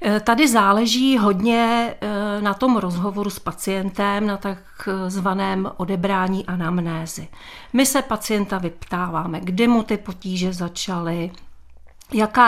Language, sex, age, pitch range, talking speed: Czech, female, 40-59, 185-210 Hz, 105 wpm